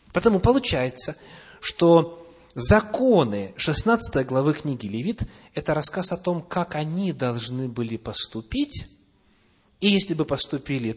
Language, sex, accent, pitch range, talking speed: Russian, male, native, 105-155 Hz, 115 wpm